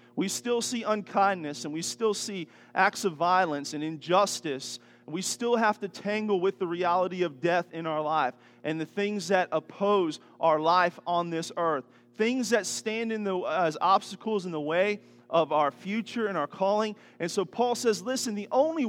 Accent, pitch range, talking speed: American, 165-225 Hz, 180 wpm